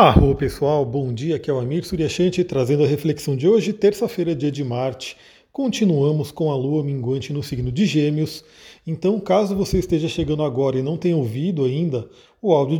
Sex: male